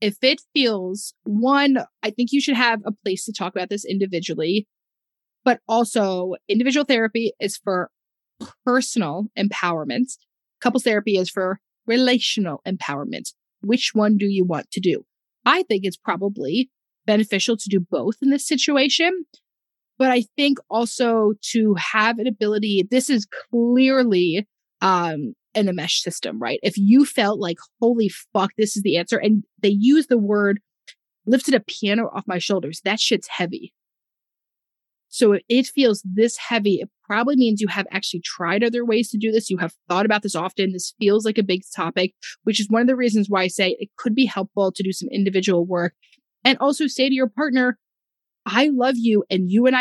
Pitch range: 195-245 Hz